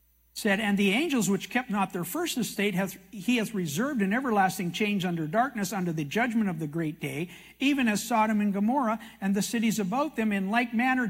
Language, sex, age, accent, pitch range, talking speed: English, male, 50-69, American, 180-250 Hz, 205 wpm